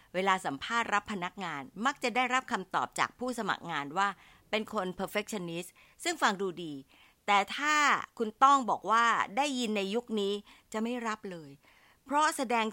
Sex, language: female, Thai